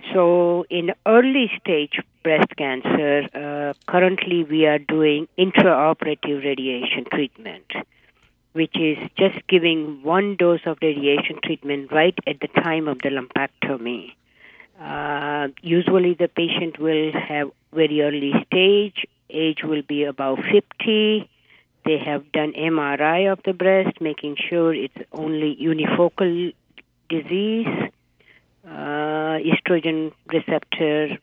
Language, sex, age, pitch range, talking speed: English, female, 50-69, 145-180 Hz, 115 wpm